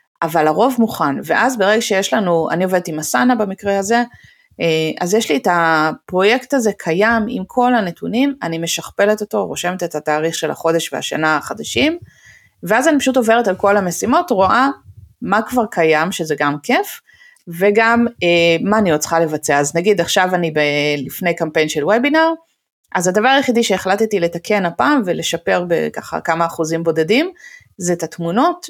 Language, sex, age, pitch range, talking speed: Hebrew, female, 30-49, 160-215 Hz, 160 wpm